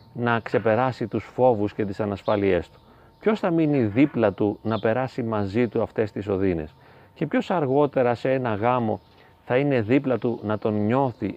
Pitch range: 105-130 Hz